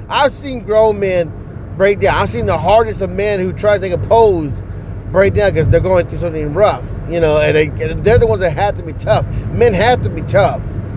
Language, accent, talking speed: English, American, 240 wpm